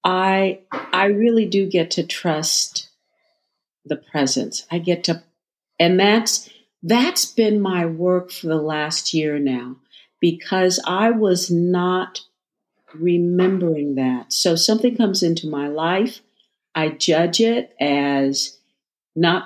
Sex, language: female, English